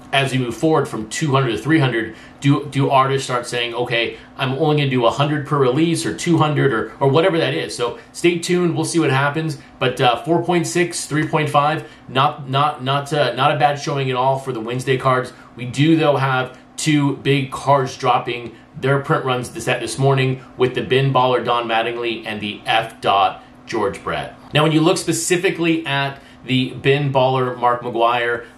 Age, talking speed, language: 30-49, 190 wpm, English